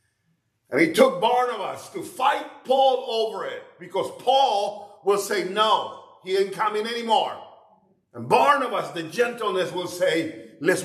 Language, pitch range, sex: English, 175-275 Hz, male